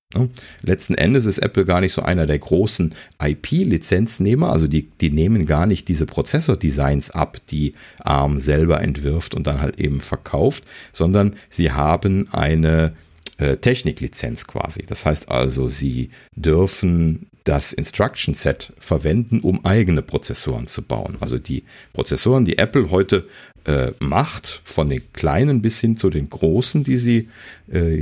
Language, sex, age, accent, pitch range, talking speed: German, male, 40-59, German, 70-100 Hz, 150 wpm